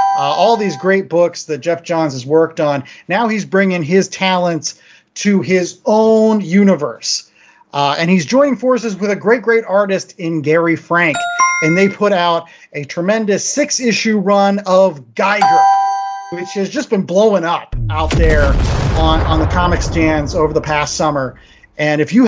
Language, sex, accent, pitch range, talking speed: English, male, American, 160-205 Hz, 170 wpm